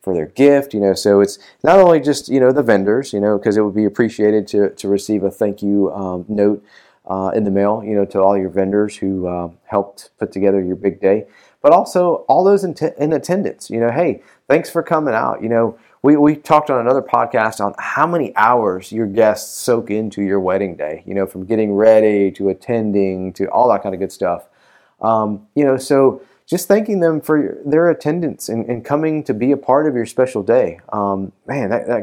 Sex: male